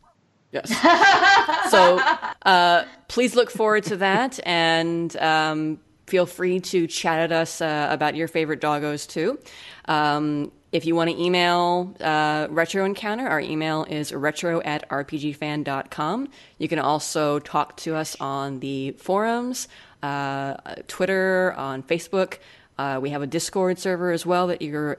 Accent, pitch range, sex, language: American, 150-180 Hz, female, English